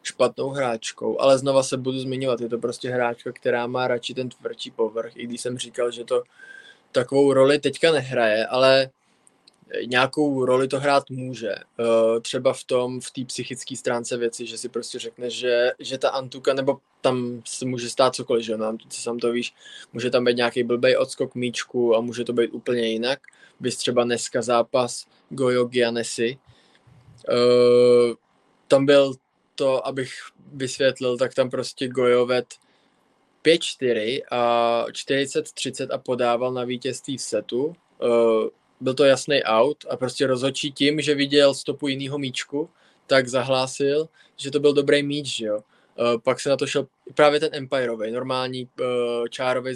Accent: native